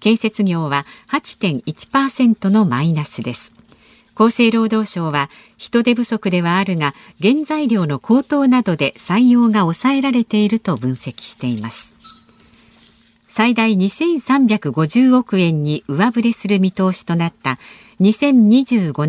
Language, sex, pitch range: Japanese, female, 165-240 Hz